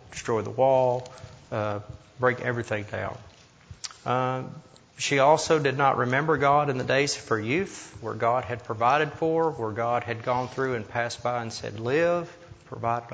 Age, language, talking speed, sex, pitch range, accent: 40-59, English, 170 wpm, male, 115-140 Hz, American